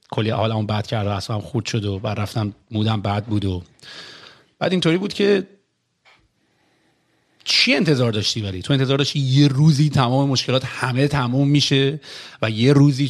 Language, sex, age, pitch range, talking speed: Persian, male, 40-59, 115-140 Hz, 165 wpm